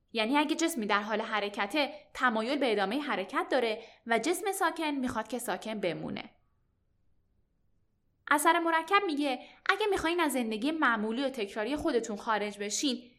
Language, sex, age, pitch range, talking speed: Persian, female, 10-29, 215-330 Hz, 140 wpm